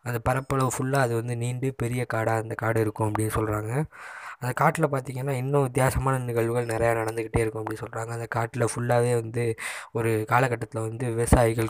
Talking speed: 165 wpm